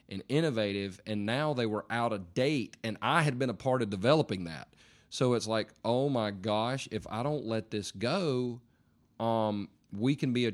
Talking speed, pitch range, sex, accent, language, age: 200 wpm, 100-120 Hz, male, American, English, 30-49